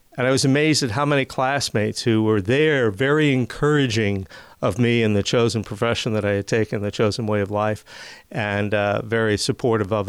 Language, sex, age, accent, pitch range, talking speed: English, male, 50-69, American, 115-140 Hz, 195 wpm